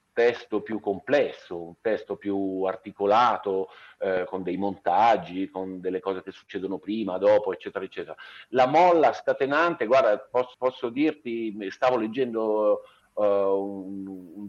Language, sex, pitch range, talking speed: Italian, male, 100-130 Hz, 135 wpm